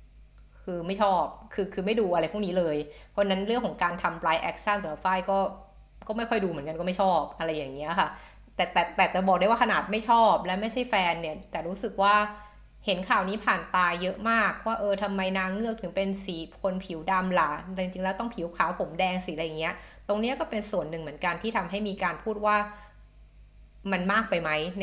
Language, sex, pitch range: Thai, female, 175-210 Hz